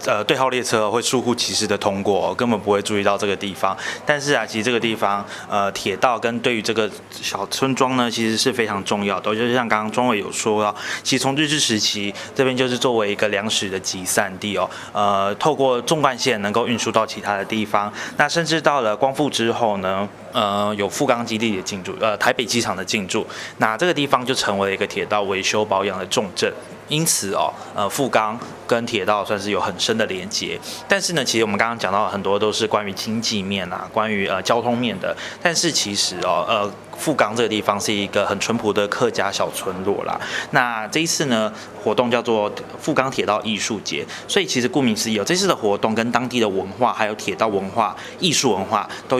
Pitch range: 100-130 Hz